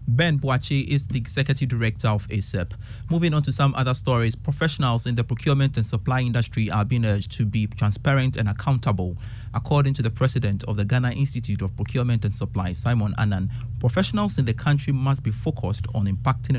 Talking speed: 190 wpm